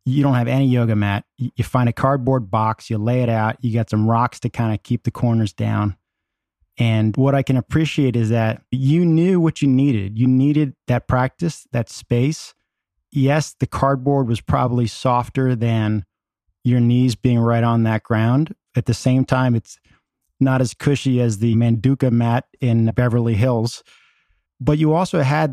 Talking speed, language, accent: 180 wpm, English, American